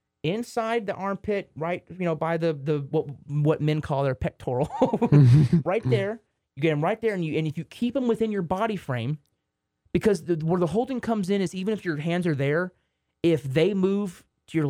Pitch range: 150-200 Hz